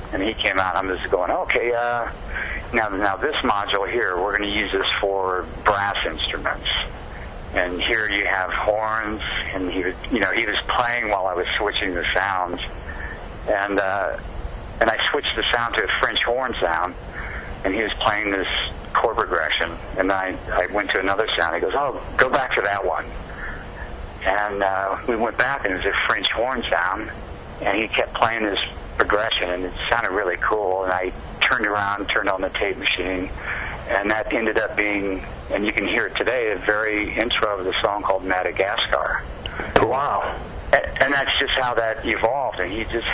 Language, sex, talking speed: English, male, 190 wpm